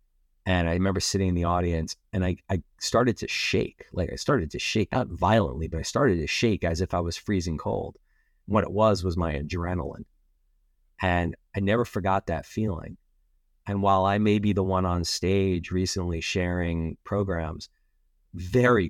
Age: 30-49